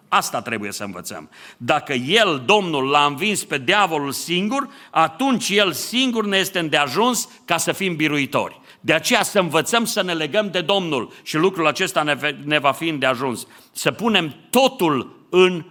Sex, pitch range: male, 130-190 Hz